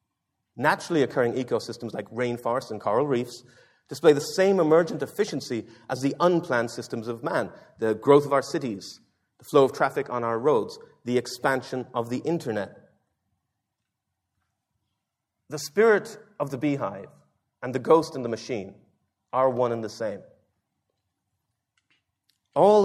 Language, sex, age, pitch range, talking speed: English, male, 30-49, 110-150 Hz, 140 wpm